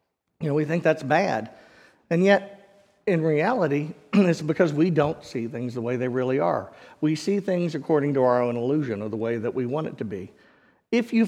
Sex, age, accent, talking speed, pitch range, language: male, 50-69, American, 215 wpm, 145-190 Hz, English